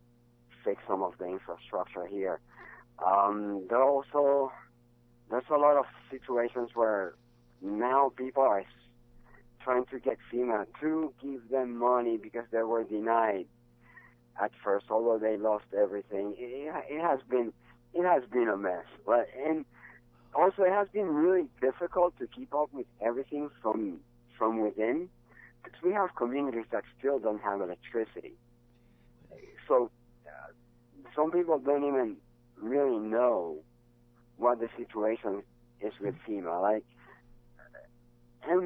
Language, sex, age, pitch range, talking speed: English, male, 60-79, 110-135 Hz, 130 wpm